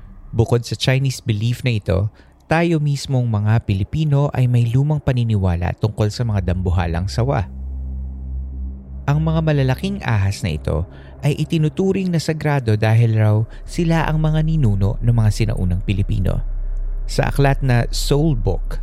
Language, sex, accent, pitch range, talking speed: Filipino, male, native, 100-140 Hz, 140 wpm